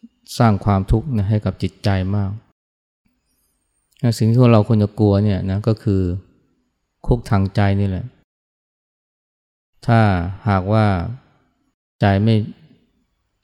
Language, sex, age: Thai, male, 20-39